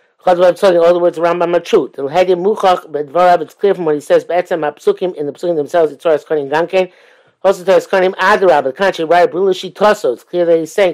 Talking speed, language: 105 wpm, English